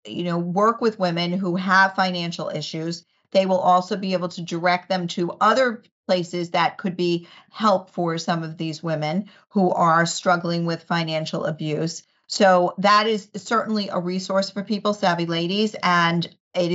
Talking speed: 170 wpm